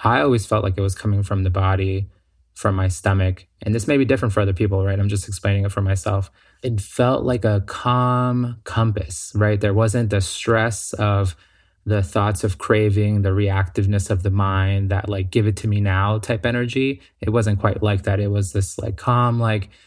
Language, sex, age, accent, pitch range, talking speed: English, male, 20-39, American, 100-115 Hz, 210 wpm